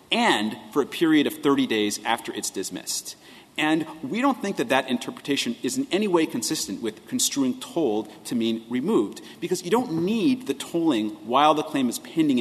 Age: 30-49